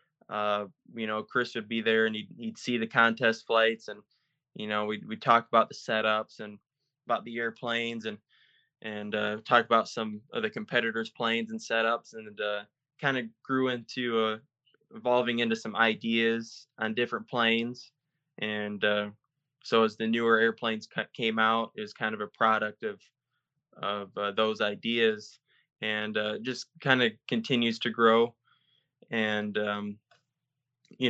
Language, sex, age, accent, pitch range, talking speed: English, male, 20-39, American, 110-120 Hz, 165 wpm